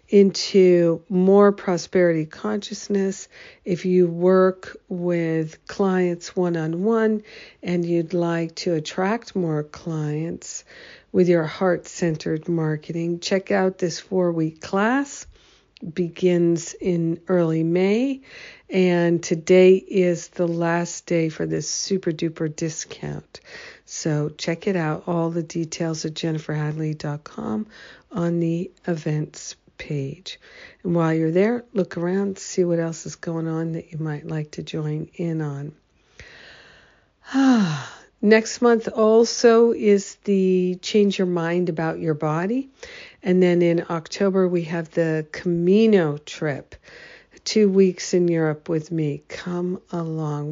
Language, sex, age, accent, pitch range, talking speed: English, female, 50-69, American, 160-195 Hz, 125 wpm